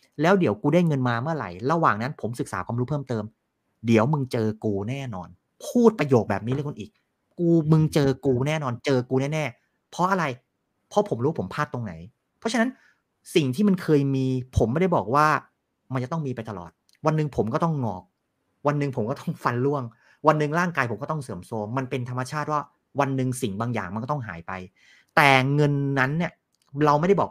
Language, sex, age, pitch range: Thai, male, 30-49, 125-165 Hz